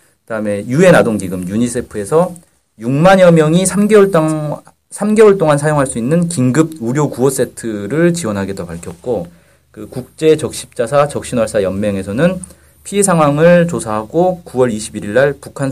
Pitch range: 110-160 Hz